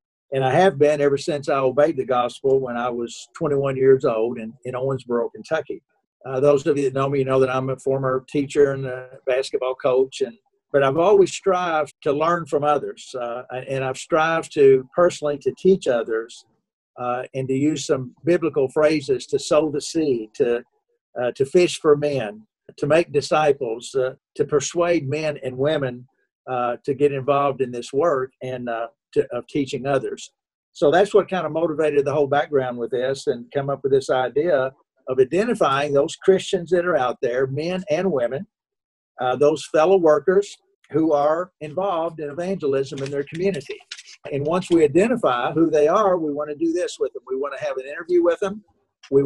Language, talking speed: English, 190 wpm